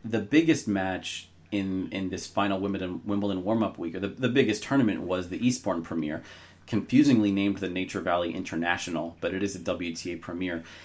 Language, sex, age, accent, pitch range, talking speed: English, male, 30-49, American, 90-110 Hz, 175 wpm